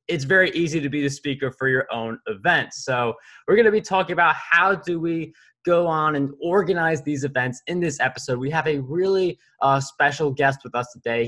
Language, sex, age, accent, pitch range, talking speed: English, male, 20-39, American, 125-175 Hz, 215 wpm